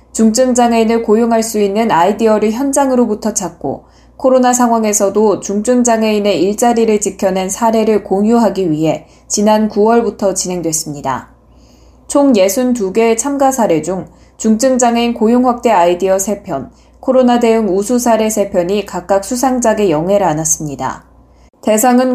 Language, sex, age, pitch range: Korean, female, 20-39, 195-240 Hz